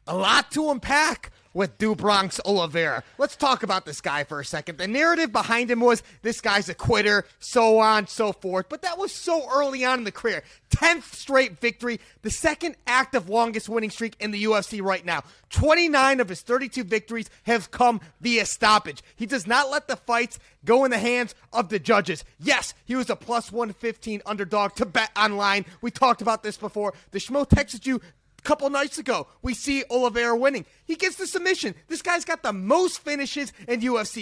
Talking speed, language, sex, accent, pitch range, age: 195 wpm, English, male, American, 205-265 Hz, 30-49